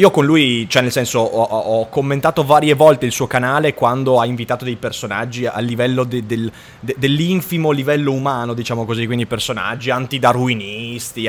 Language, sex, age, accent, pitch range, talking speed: Italian, male, 20-39, native, 125-170 Hz, 175 wpm